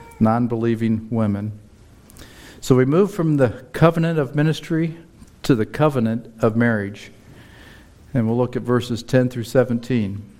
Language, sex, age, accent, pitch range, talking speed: English, male, 50-69, American, 110-135 Hz, 135 wpm